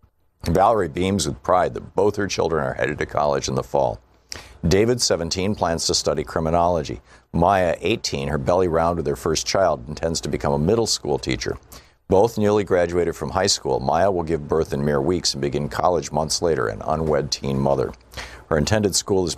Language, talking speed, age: English, 195 wpm, 50-69